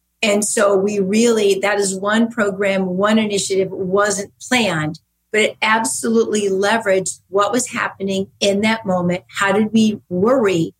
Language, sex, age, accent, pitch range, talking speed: English, female, 40-59, American, 185-215 Hz, 145 wpm